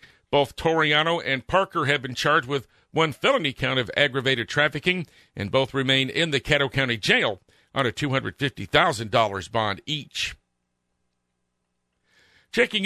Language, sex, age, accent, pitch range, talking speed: English, male, 50-69, American, 130-170 Hz, 130 wpm